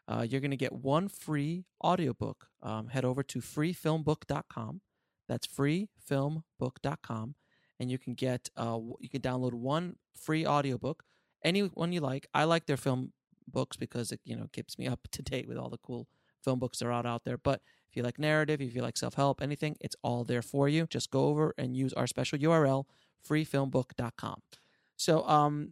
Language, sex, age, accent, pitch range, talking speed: English, male, 30-49, American, 125-150 Hz, 190 wpm